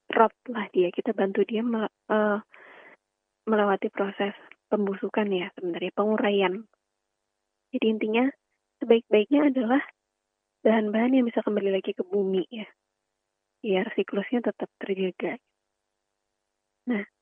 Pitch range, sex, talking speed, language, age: 195-235 Hz, female, 100 wpm, Indonesian, 20-39